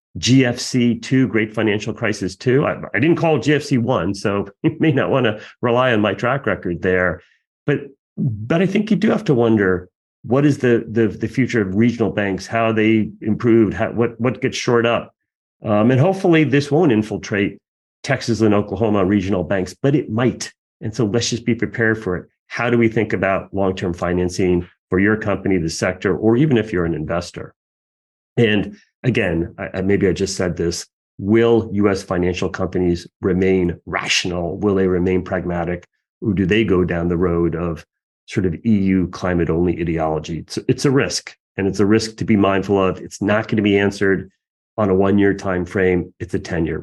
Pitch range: 95-115 Hz